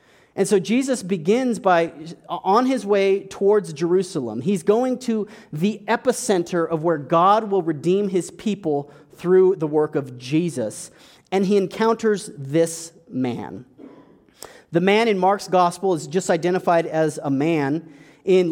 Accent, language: American, English